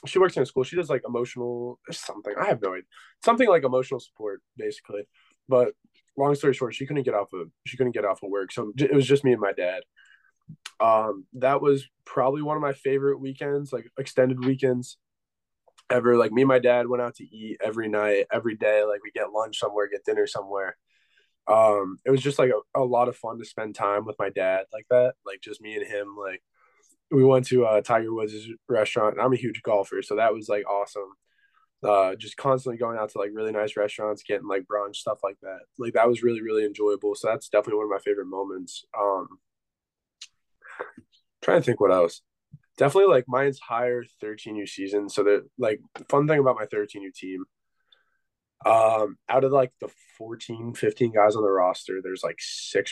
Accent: American